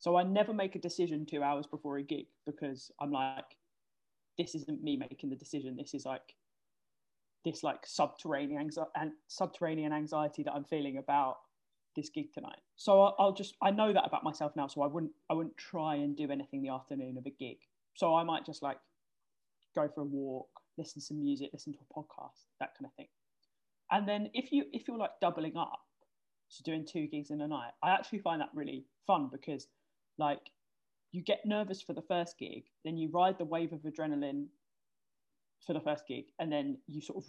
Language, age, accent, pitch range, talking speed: English, 20-39, British, 150-180 Hz, 200 wpm